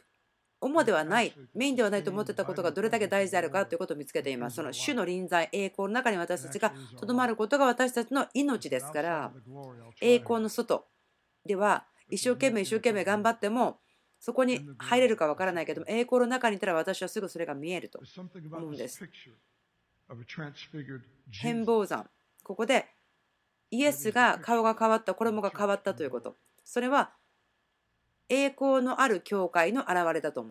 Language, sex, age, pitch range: Japanese, female, 40-59, 160-230 Hz